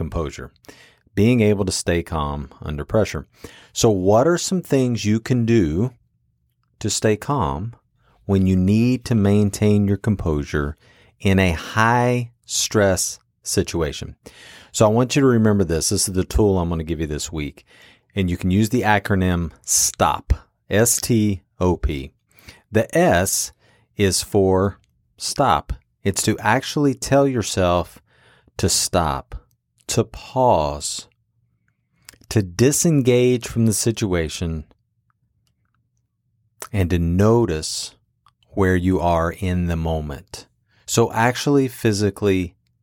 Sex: male